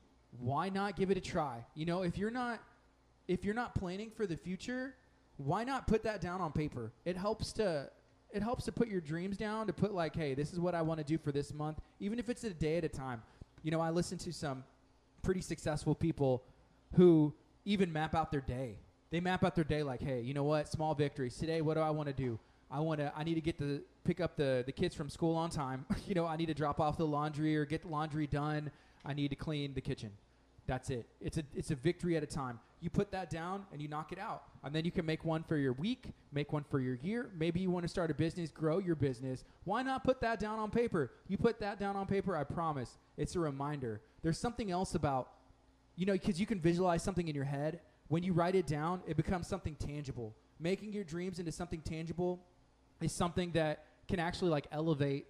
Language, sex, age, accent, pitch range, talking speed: English, male, 20-39, American, 145-185 Hz, 245 wpm